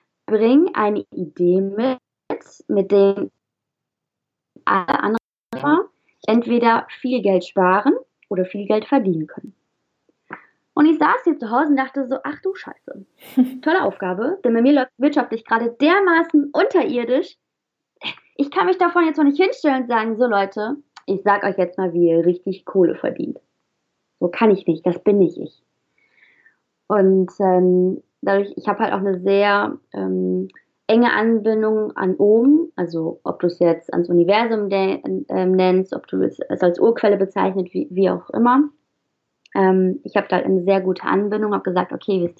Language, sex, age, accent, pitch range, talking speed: German, female, 20-39, German, 190-275 Hz, 165 wpm